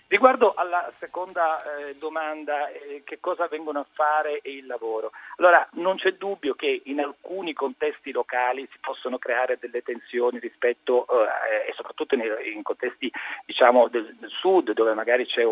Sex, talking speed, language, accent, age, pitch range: male, 145 wpm, Italian, native, 40-59, 145-230 Hz